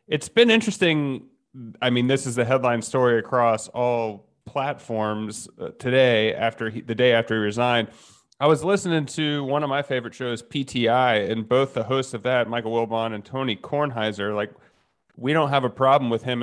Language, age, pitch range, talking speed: English, 30-49, 110-130 Hz, 180 wpm